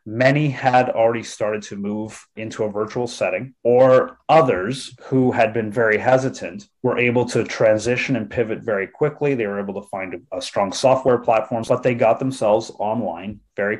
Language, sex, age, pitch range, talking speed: English, male, 30-49, 110-130 Hz, 180 wpm